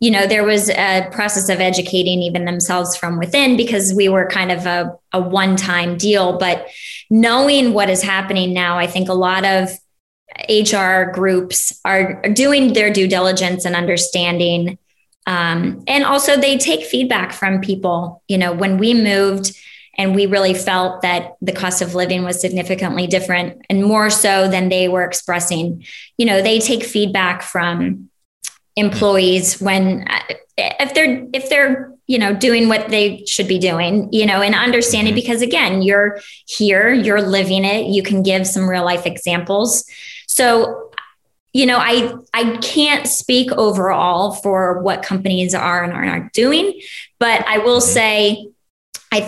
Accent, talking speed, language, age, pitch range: American, 160 wpm, English, 20-39, 185-230 Hz